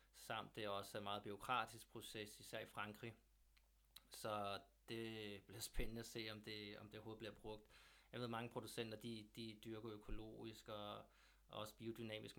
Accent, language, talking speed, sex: native, Danish, 180 wpm, male